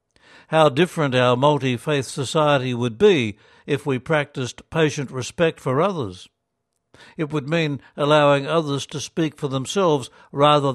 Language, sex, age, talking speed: English, male, 60-79, 135 wpm